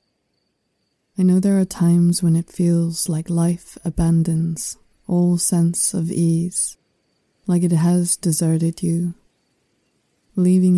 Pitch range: 165-185 Hz